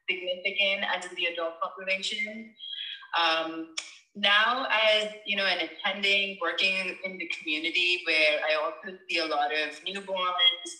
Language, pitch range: English, 160-200 Hz